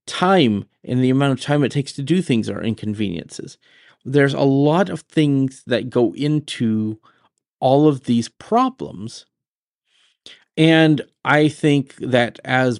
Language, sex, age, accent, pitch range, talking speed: English, male, 40-59, American, 115-145 Hz, 140 wpm